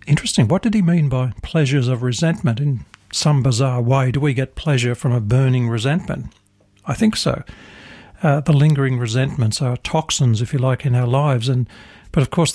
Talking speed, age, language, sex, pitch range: 190 wpm, 60-79, English, male, 125-160 Hz